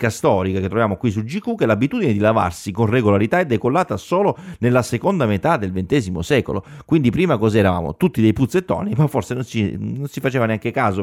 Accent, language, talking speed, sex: native, Italian, 195 wpm, male